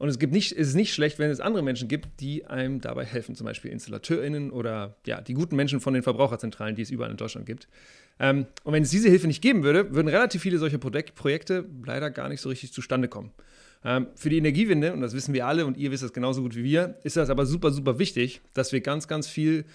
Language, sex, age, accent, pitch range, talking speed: German, male, 30-49, German, 125-160 Hz, 245 wpm